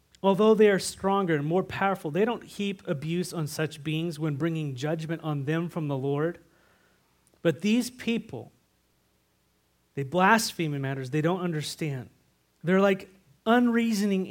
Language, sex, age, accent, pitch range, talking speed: English, male, 30-49, American, 145-190 Hz, 145 wpm